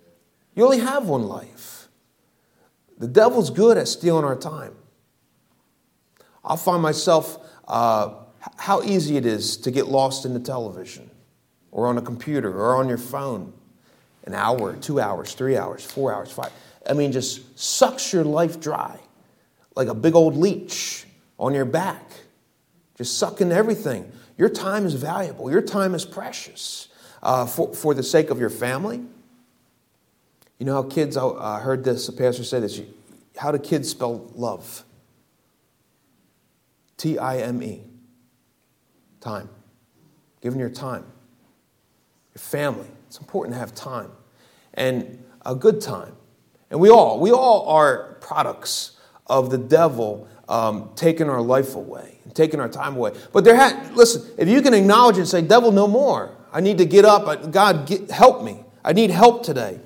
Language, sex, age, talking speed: English, male, 30-49, 155 wpm